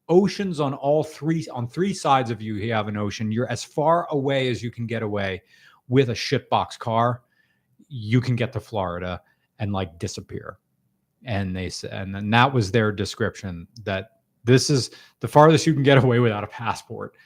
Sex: male